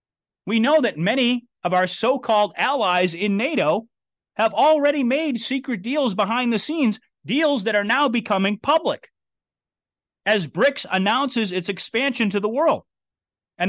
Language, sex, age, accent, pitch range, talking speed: English, male, 30-49, American, 175-225 Hz, 145 wpm